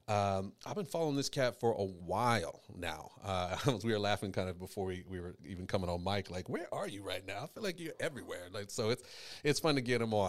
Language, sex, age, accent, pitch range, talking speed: English, male, 30-49, American, 95-115 Hz, 255 wpm